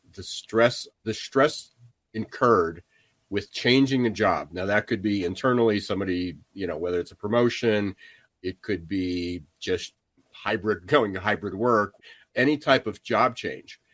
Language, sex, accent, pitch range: English, male, American, 95-115 Hz